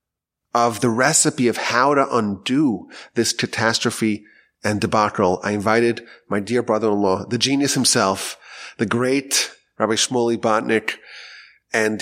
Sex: male